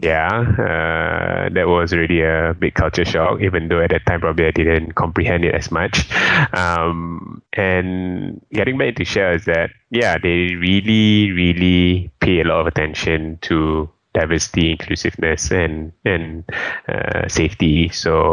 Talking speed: 150 wpm